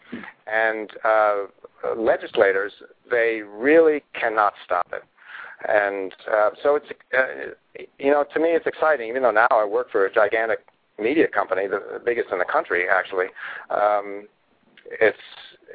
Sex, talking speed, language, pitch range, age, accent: male, 140 wpm, English, 105-150 Hz, 50-69, American